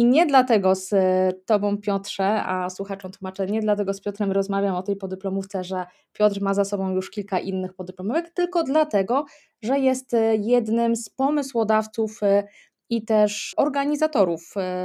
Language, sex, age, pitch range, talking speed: Polish, female, 20-39, 190-235 Hz, 145 wpm